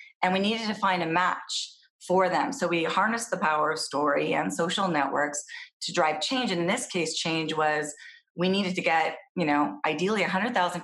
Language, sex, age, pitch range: English, female, 30-49, 160-205 Hz